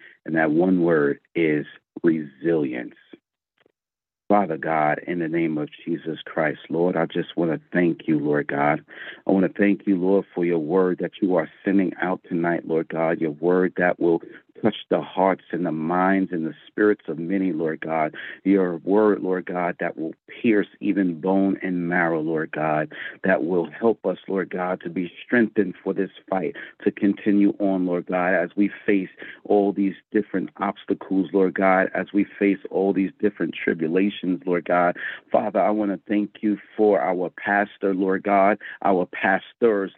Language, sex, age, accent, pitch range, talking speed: English, male, 50-69, American, 90-100 Hz, 175 wpm